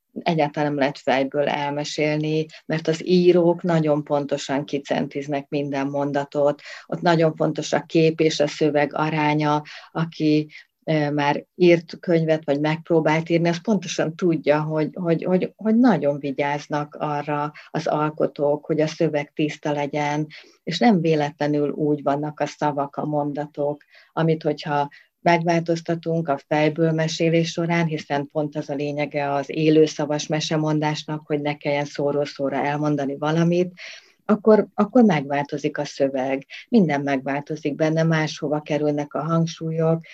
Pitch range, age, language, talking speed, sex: 145-165 Hz, 40-59, Hungarian, 135 wpm, female